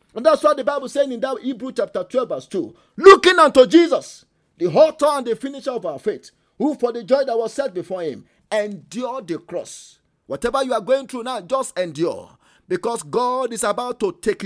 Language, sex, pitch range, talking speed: English, male, 230-300 Hz, 210 wpm